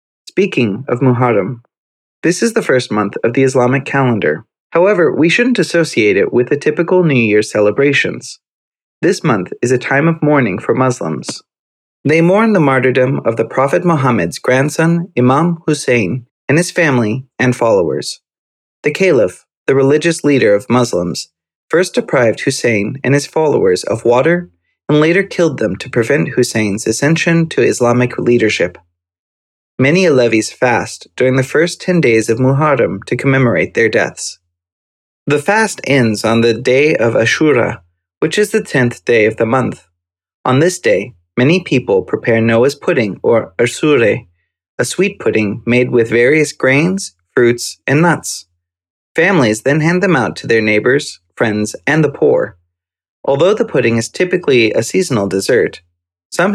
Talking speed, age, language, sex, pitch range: 155 wpm, 30-49, English, male, 105-155 Hz